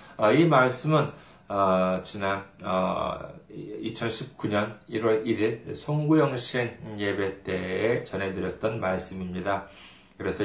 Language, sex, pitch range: Korean, male, 100-145 Hz